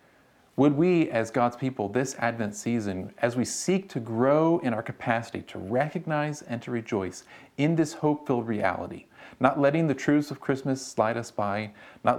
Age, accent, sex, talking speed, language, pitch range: 40-59, American, male, 170 wpm, English, 115-145 Hz